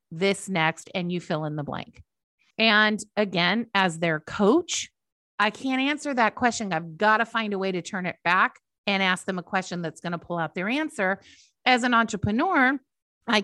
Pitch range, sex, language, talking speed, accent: 185-255 Hz, female, English, 195 wpm, American